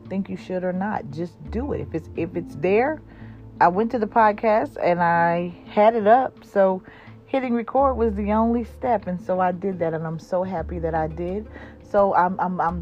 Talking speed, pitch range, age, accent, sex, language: 215 wpm, 155-205 Hz, 40-59, American, female, English